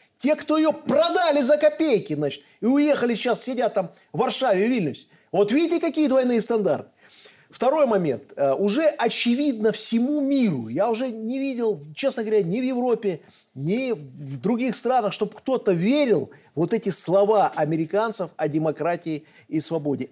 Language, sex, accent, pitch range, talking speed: Russian, male, native, 195-265 Hz, 160 wpm